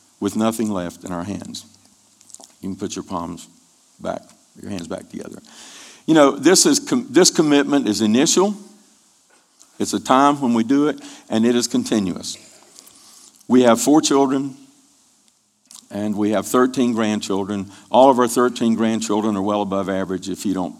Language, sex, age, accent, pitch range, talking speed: English, male, 50-69, American, 105-145 Hz, 165 wpm